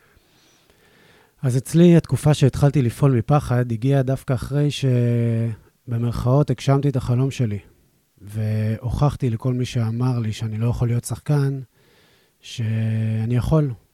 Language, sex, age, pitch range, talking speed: Hebrew, male, 30-49, 110-130 Hz, 110 wpm